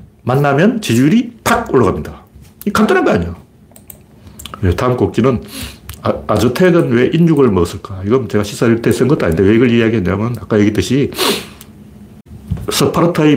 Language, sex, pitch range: Korean, male, 105-140 Hz